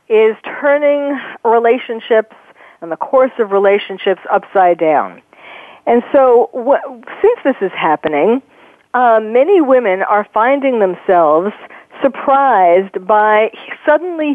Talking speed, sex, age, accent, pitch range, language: 105 wpm, female, 50-69, American, 200-265 Hz, English